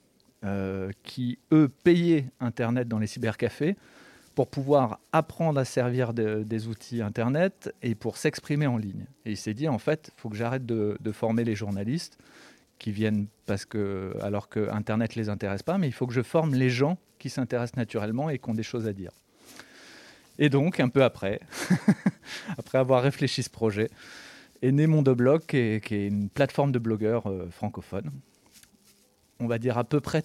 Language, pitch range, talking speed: French, 110-135 Hz, 185 wpm